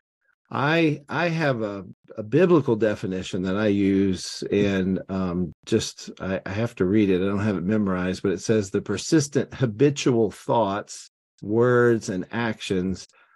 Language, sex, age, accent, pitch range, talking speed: English, male, 50-69, American, 95-120 Hz, 155 wpm